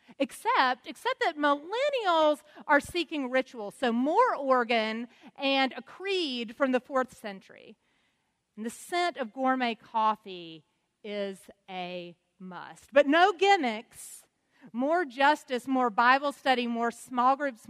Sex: female